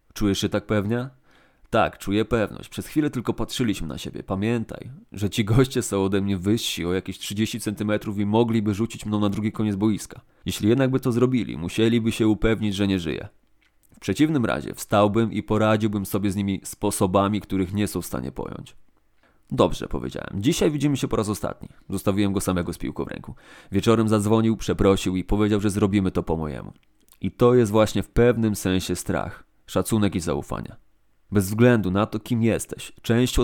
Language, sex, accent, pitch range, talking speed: Polish, male, native, 95-110 Hz, 185 wpm